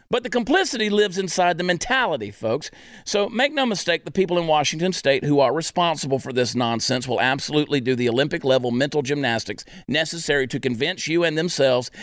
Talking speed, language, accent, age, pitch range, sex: 180 wpm, English, American, 40-59, 135-190 Hz, male